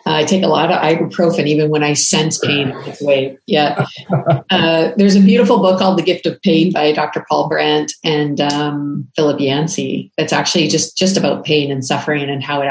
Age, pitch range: 40-59, 150-185 Hz